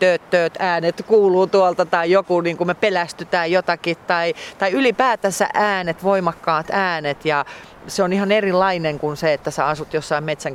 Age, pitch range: 40-59, 165-205 Hz